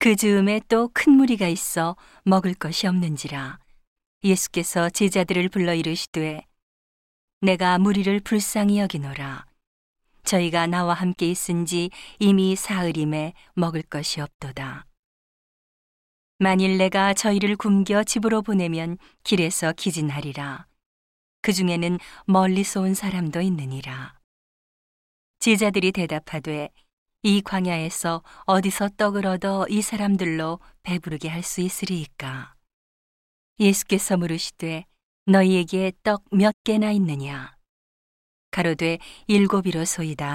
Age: 40-59